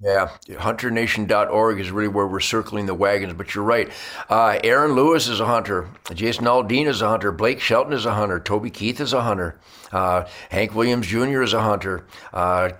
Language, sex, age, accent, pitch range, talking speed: English, male, 60-79, American, 105-170 Hz, 190 wpm